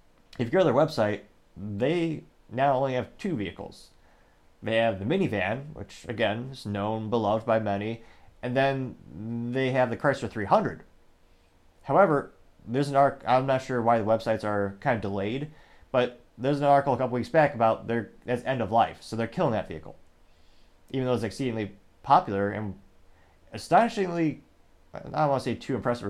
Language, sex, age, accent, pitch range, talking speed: English, male, 30-49, American, 100-135 Hz, 175 wpm